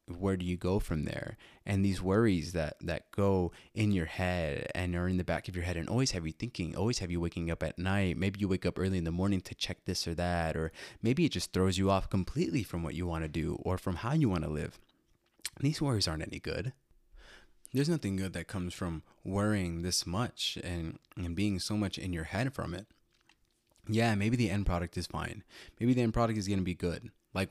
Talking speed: 240 wpm